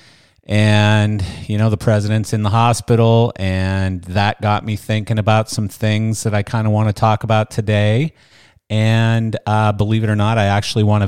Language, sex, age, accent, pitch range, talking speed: English, male, 40-59, American, 100-115 Hz, 190 wpm